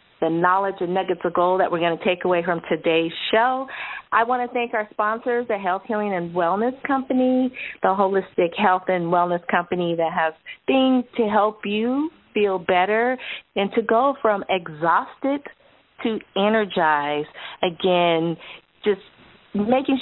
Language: English